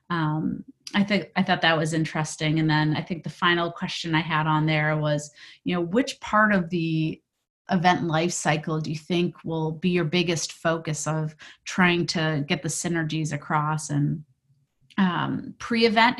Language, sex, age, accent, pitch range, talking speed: English, female, 30-49, American, 160-190 Hz, 175 wpm